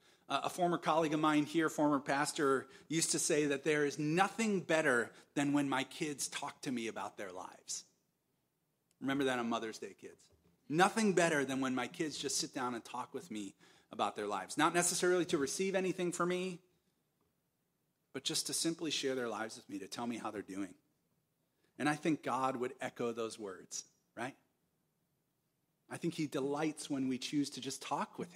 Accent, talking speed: American, 190 wpm